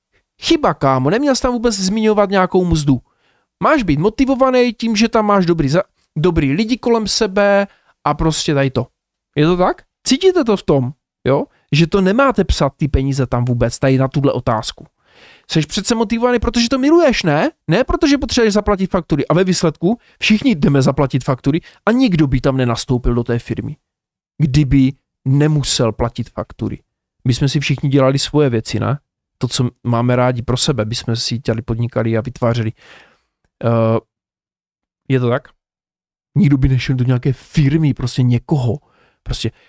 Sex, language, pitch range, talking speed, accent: male, Czech, 135-195 Hz, 165 wpm, native